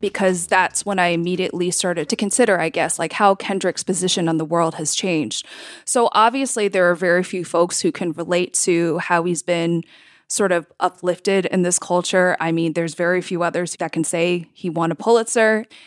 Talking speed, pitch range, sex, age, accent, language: 195 wpm, 175-215 Hz, female, 20-39, American, English